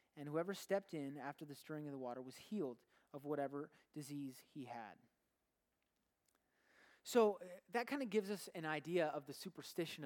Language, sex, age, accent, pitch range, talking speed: English, male, 20-39, American, 140-180 Hz, 165 wpm